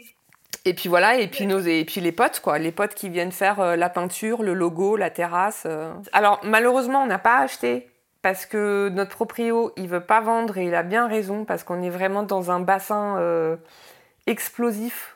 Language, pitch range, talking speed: French, 170-205 Hz, 200 wpm